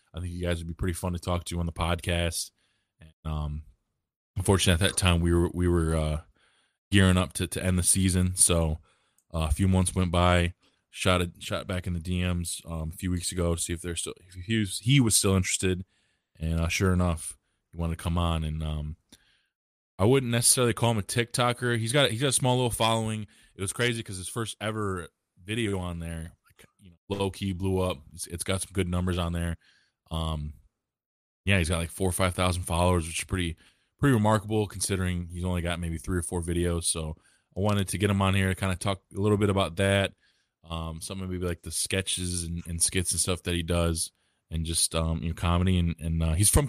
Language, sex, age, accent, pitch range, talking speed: English, male, 20-39, American, 85-100 Hz, 235 wpm